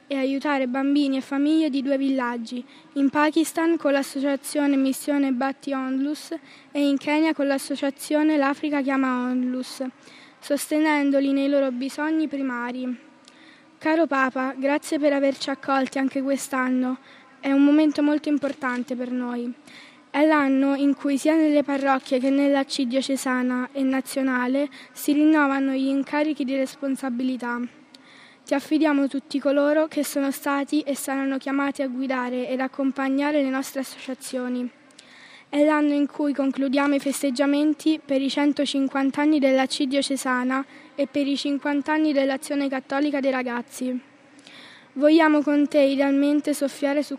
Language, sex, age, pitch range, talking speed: Italian, female, 20-39, 265-290 Hz, 135 wpm